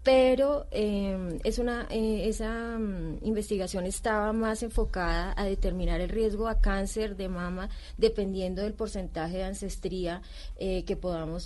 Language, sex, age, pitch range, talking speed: Spanish, female, 30-49, 175-215 Hz, 125 wpm